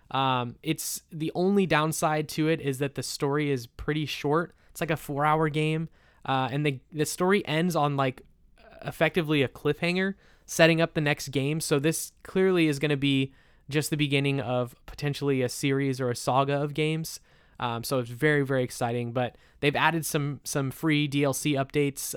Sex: male